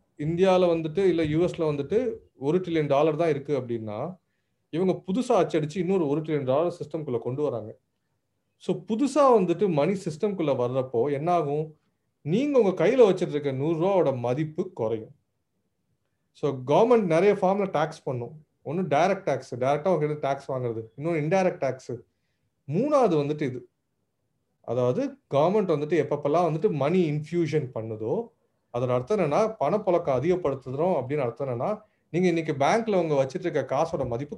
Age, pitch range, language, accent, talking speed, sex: 30-49, 135-195 Hz, Tamil, native, 140 wpm, male